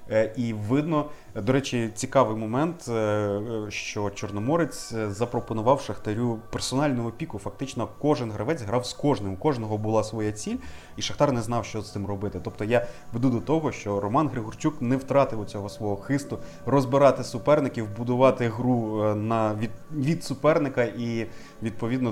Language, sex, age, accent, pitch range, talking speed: Ukrainian, male, 30-49, native, 100-125 Hz, 140 wpm